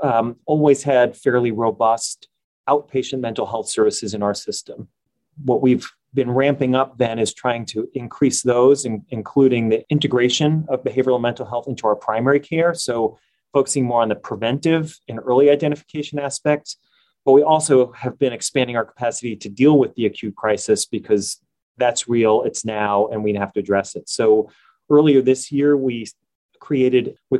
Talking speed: 165 wpm